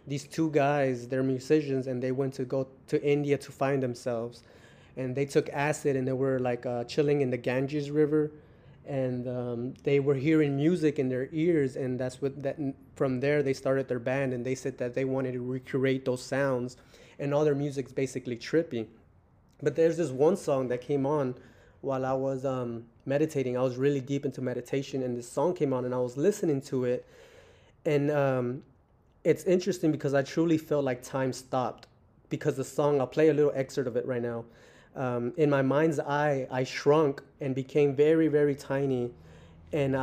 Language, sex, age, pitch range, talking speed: English, male, 20-39, 125-145 Hz, 195 wpm